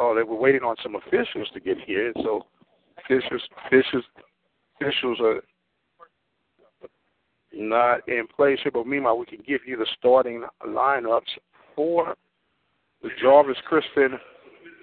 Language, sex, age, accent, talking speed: English, male, 60-79, American, 130 wpm